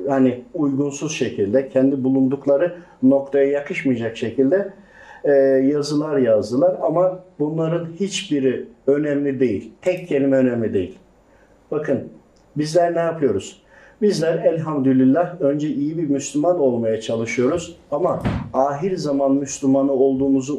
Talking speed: 105 wpm